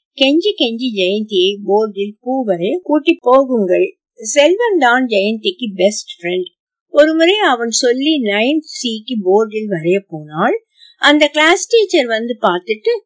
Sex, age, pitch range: female, 50-69, 200-300 Hz